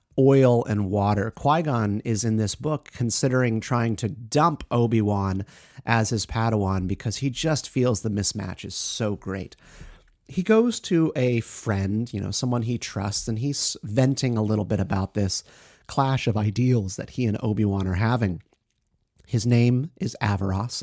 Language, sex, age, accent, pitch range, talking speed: English, male, 30-49, American, 110-135 Hz, 160 wpm